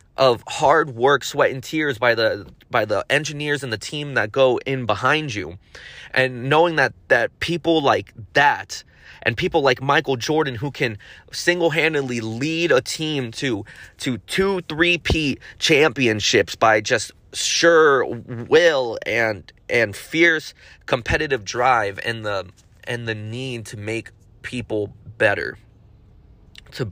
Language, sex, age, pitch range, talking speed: English, male, 20-39, 115-155 Hz, 140 wpm